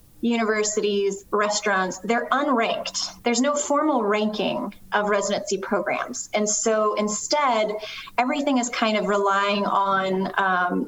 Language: English